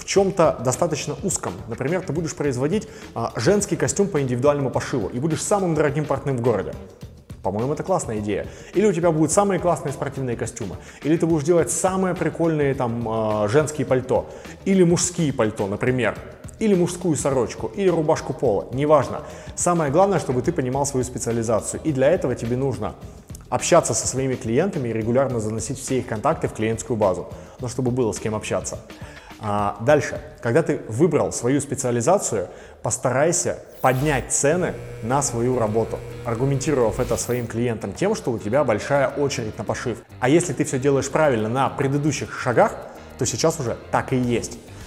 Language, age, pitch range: Russian, 20-39, 120-165 Hz